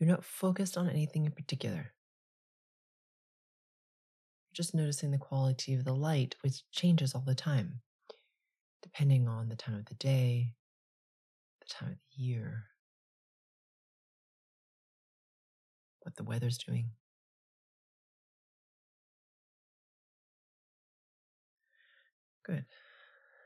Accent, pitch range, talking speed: American, 135-180 Hz, 95 wpm